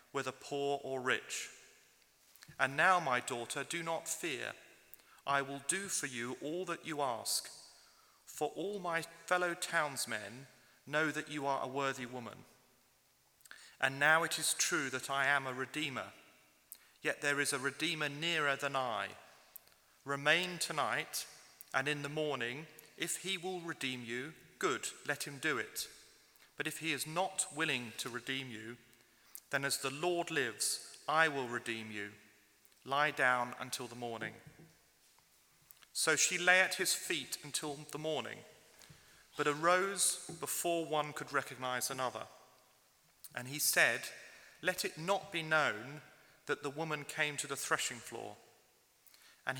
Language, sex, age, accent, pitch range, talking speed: English, male, 40-59, British, 130-165 Hz, 150 wpm